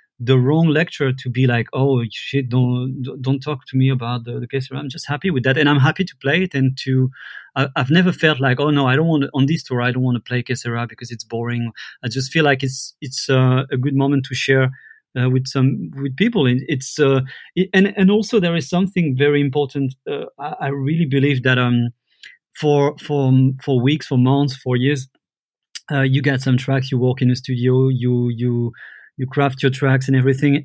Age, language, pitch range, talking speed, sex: 30-49, English, 130-145 Hz, 220 wpm, male